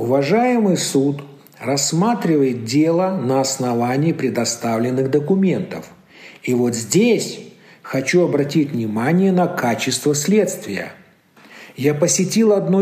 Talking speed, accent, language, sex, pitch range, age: 95 wpm, native, Russian, male, 145-200 Hz, 50-69